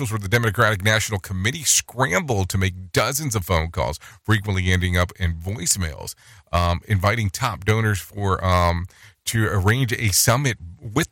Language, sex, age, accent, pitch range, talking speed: English, male, 40-59, American, 90-120 Hz, 150 wpm